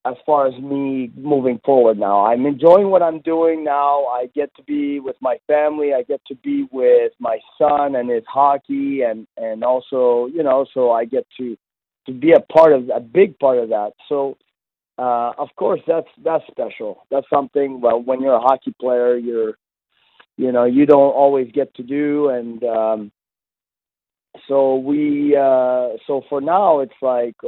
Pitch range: 120-145 Hz